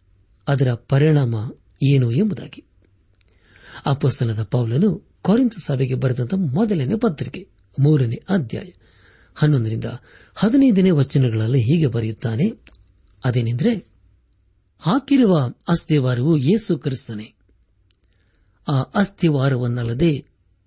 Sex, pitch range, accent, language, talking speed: male, 115-180 Hz, native, Kannada, 70 wpm